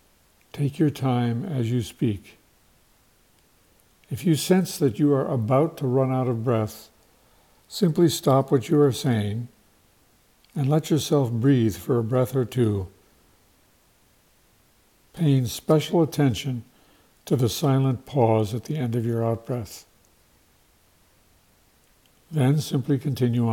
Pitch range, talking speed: 110-145 Hz, 125 wpm